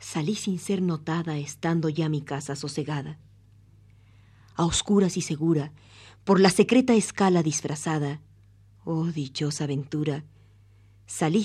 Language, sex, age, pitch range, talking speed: Spanish, female, 40-59, 105-165 Hz, 115 wpm